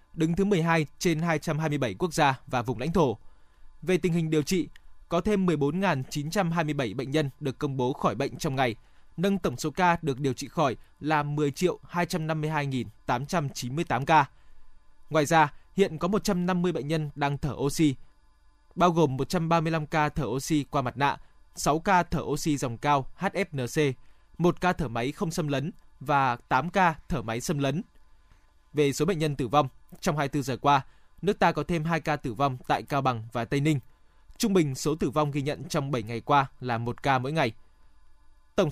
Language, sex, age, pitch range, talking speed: Vietnamese, male, 20-39, 135-170 Hz, 185 wpm